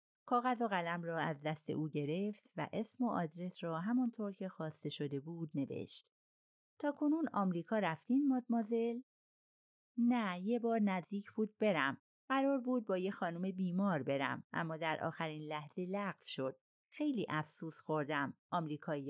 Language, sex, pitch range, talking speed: Persian, female, 160-230 Hz, 150 wpm